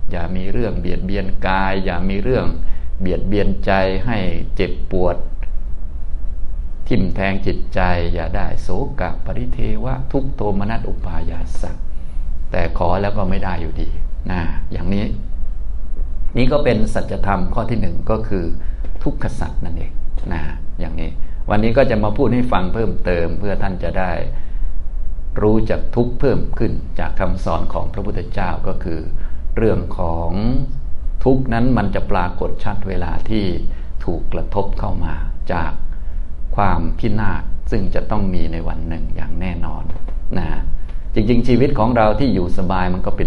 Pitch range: 80-105 Hz